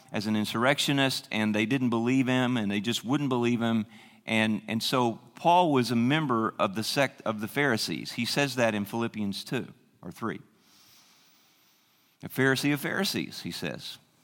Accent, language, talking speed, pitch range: American, English, 175 wpm, 115-150 Hz